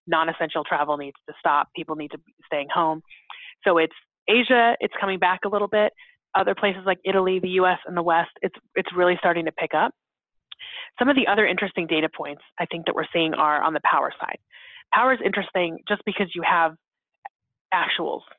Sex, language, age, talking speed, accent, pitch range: female, English, 30-49, 200 wpm, American, 165-205 Hz